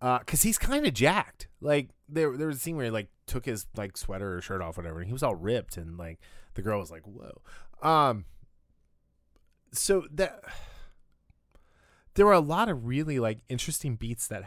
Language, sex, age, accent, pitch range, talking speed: English, male, 20-39, American, 85-125 Hz, 200 wpm